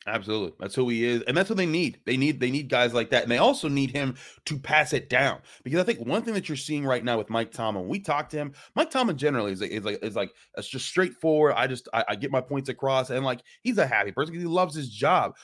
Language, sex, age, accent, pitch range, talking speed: English, male, 20-39, American, 115-160 Hz, 290 wpm